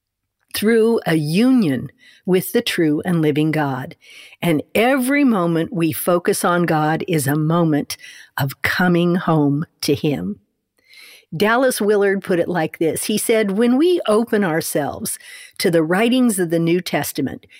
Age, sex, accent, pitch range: 50-69, female, American, 160-225 Hz